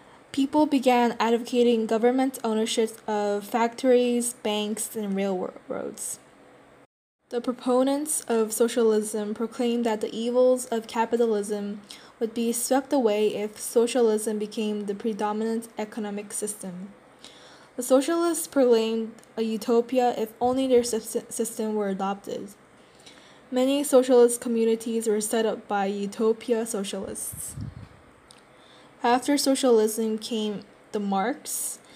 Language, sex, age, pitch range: Korean, female, 10-29, 215-245 Hz